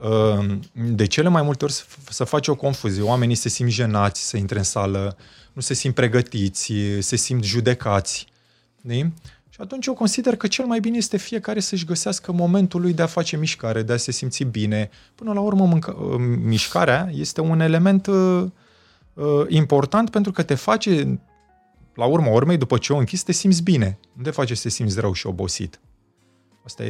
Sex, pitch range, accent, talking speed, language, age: male, 105-165 Hz, native, 185 wpm, Romanian, 20-39